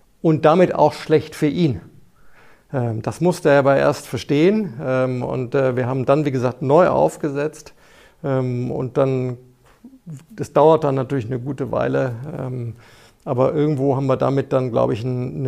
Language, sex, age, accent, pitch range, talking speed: German, male, 50-69, German, 125-150 Hz, 145 wpm